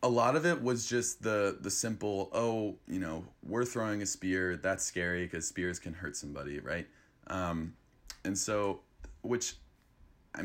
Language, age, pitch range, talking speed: English, 20-39, 85-100 Hz, 165 wpm